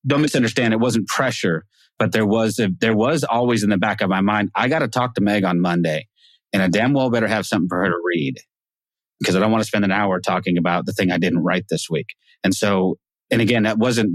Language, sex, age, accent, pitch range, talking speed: English, male, 30-49, American, 95-110 Hz, 255 wpm